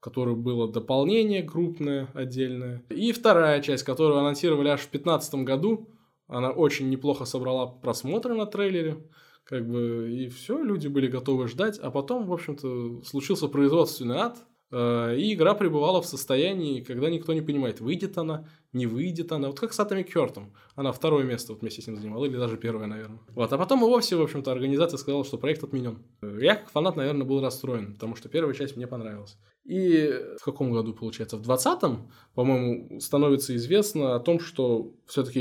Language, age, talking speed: Russian, 20-39, 180 wpm